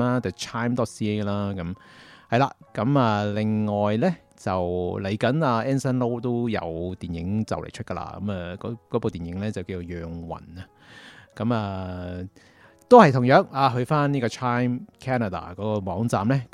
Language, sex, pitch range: Chinese, male, 95-125 Hz